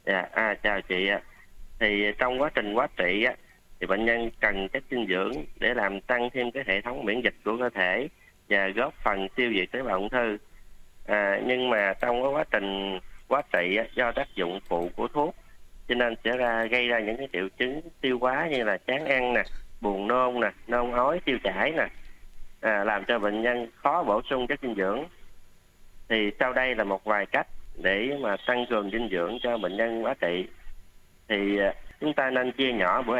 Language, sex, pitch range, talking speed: Vietnamese, male, 95-125 Hz, 205 wpm